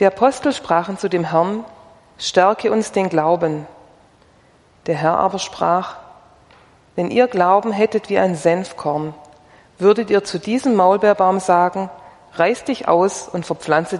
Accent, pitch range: German, 160-210 Hz